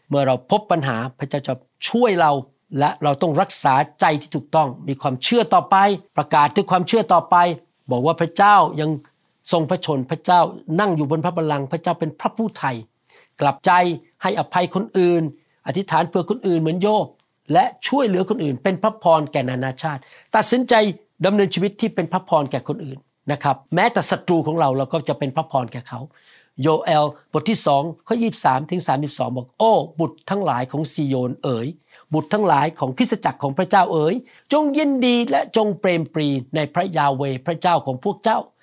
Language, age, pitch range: Thai, 60-79, 145-205 Hz